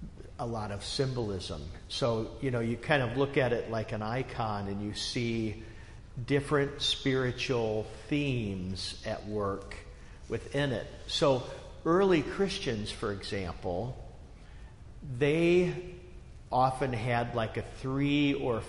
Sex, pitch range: male, 105-130 Hz